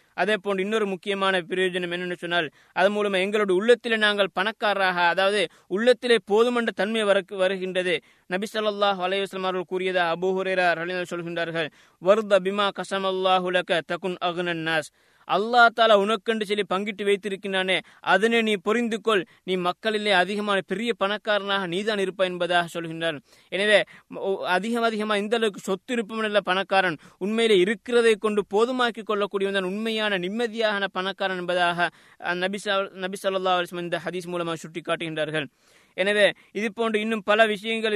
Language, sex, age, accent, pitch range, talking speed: Tamil, male, 20-39, native, 180-210 Hz, 90 wpm